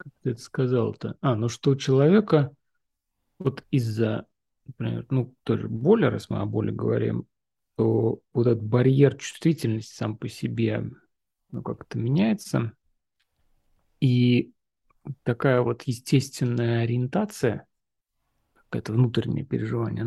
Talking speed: 115 wpm